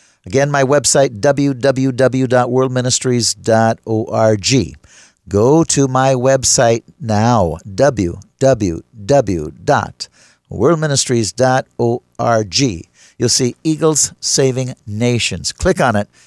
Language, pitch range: English, 110-135 Hz